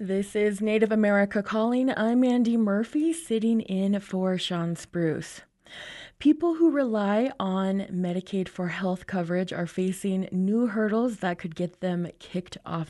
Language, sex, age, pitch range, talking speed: English, female, 20-39, 185-230 Hz, 145 wpm